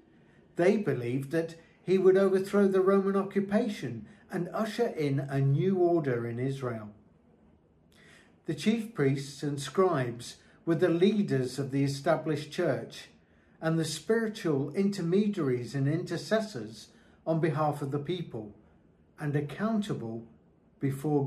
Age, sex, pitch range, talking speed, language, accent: 50-69, male, 125-180 Hz, 120 wpm, English, British